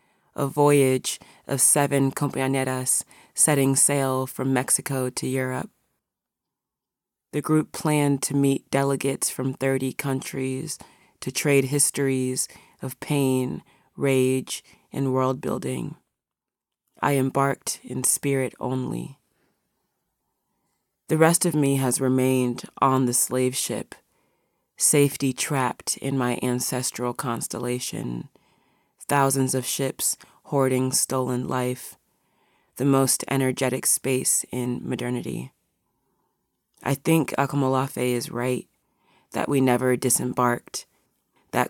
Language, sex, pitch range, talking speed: English, female, 125-135 Hz, 100 wpm